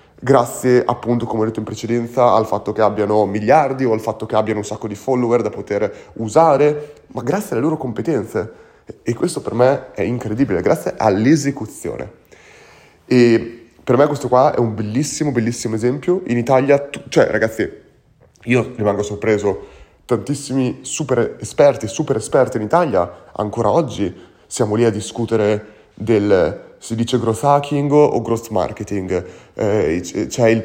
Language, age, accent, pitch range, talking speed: Italian, 30-49, native, 115-145 Hz, 155 wpm